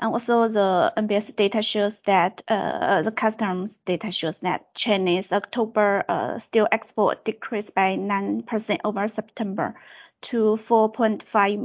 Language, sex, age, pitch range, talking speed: English, female, 30-49, 195-225 Hz, 130 wpm